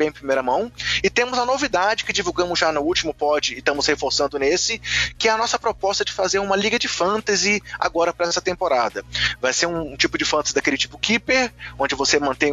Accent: Brazilian